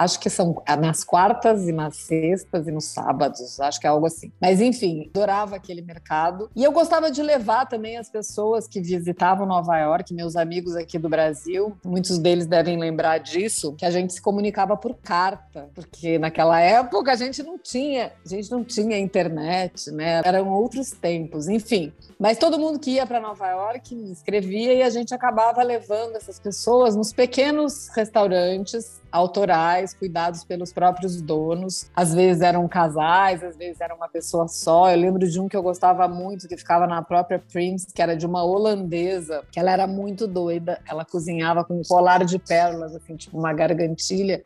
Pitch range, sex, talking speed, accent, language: 170-220 Hz, female, 185 wpm, Brazilian, Portuguese